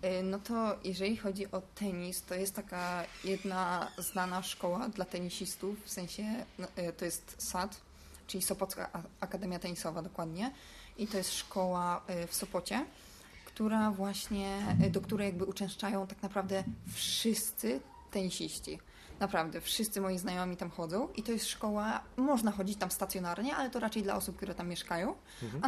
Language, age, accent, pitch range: Polish, 20-39, native, 180-205 Hz